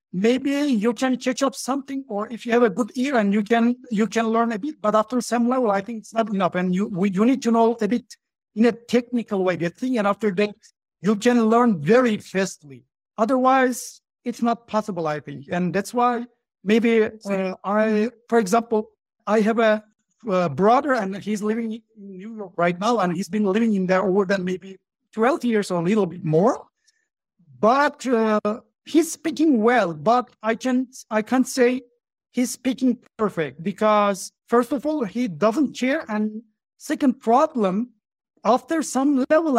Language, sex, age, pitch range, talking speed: English, male, 60-79, 200-245 Hz, 185 wpm